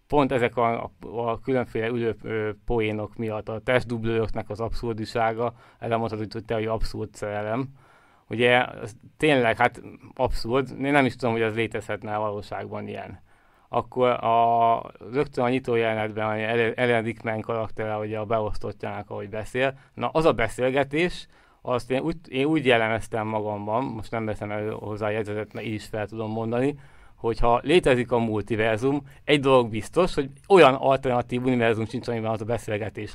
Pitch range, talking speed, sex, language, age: 110-130 Hz, 160 wpm, male, Hungarian, 20-39